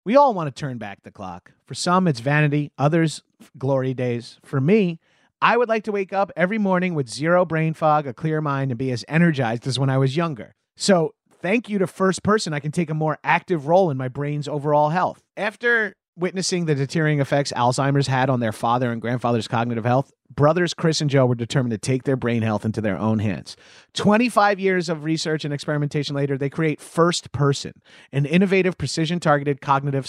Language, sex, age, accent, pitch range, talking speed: English, male, 30-49, American, 130-170 Hz, 205 wpm